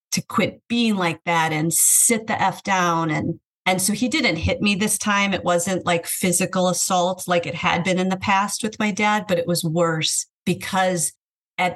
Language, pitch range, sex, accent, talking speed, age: English, 170-195 Hz, female, American, 205 wpm, 40-59